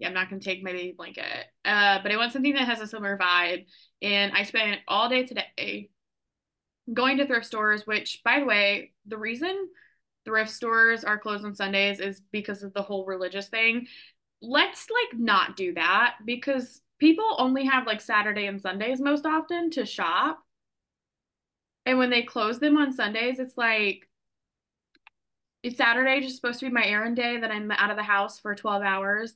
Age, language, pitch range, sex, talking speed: 20-39, English, 200-235 Hz, female, 190 wpm